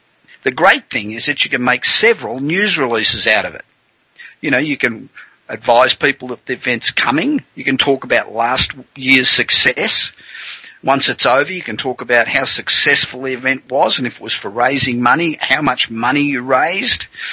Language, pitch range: English, 130-185 Hz